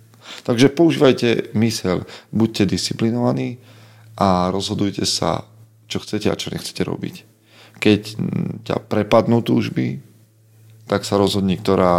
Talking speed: 110 wpm